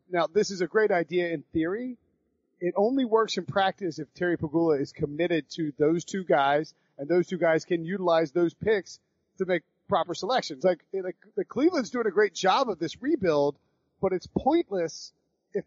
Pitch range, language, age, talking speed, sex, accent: 165-195 Hz, English, 30-49, 190 wpm, male, American